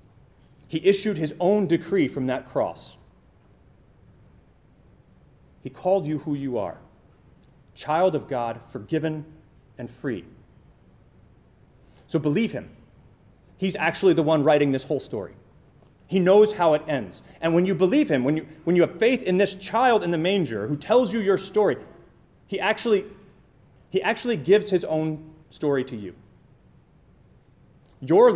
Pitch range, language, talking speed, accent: 130-195 Hz, English, 140 wpm, American